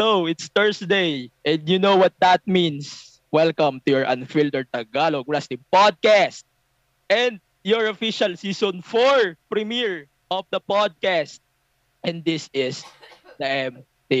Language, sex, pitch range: English, male, 125-190 Hz